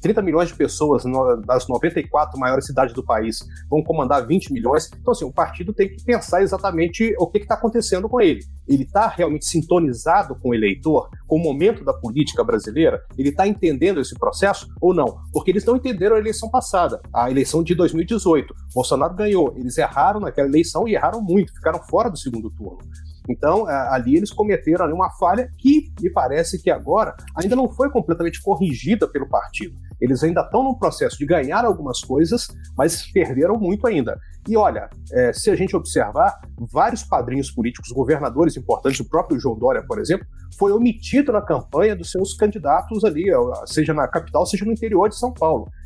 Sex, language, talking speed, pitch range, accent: male, Portuguese, 180 wpm, 130-210 Hz, Brazilian